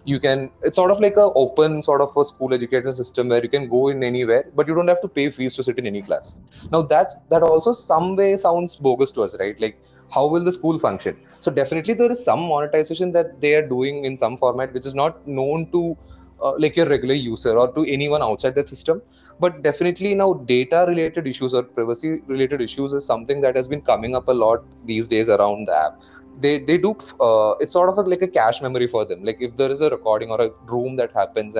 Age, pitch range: 20-39, 125-165 Hz